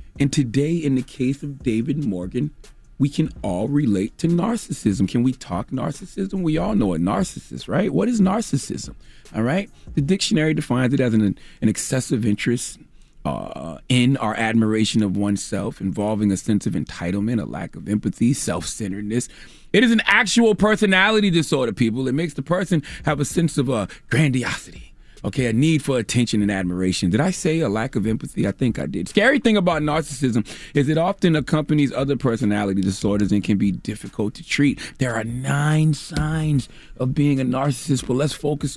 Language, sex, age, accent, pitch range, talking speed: English, male, 30-49, American, 105-150 Hz, 180 wpm